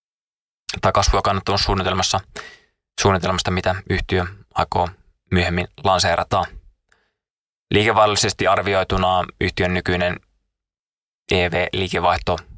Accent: native